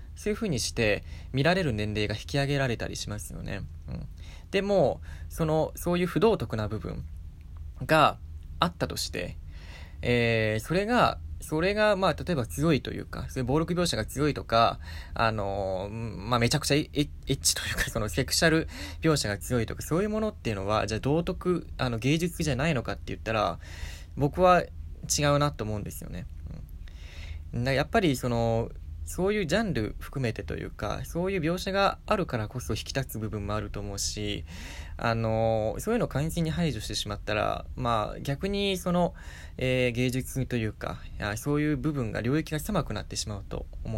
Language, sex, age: Japanese, male, 20-39